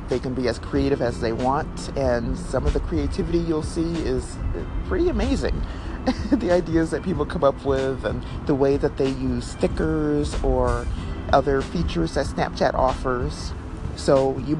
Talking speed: 165 wpm